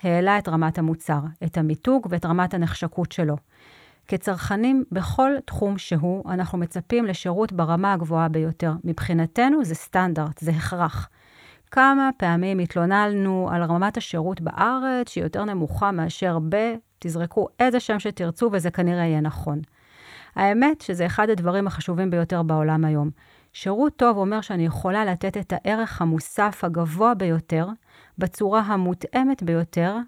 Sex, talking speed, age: female, 125 wpm, 30-49